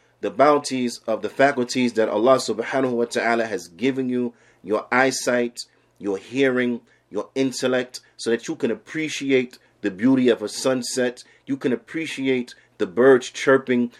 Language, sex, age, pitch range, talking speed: English, male, 40-59, 120-135 Hz, 150 wpm